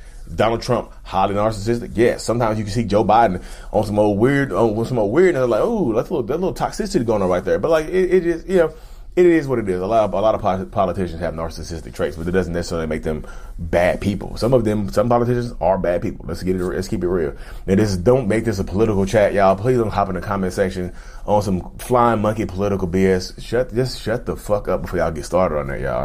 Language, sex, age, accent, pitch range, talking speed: English, male, 30-49, American, 80-105 Hz, 265 wpm